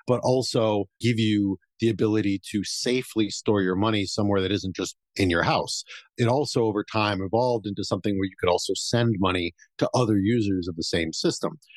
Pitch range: 95-115 Hz